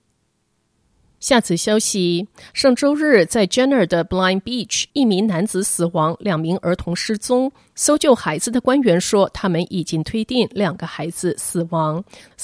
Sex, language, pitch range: female, Chinese, 175-225 Hz